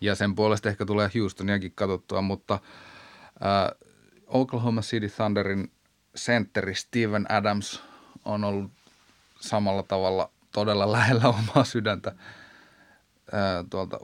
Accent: native